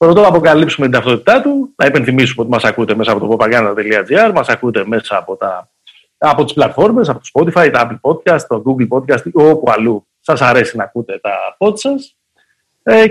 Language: Greek